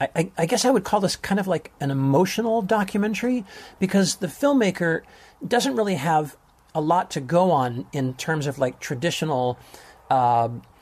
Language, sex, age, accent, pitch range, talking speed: English, male, 40-59, American, 140-190 Hz, 165 wpm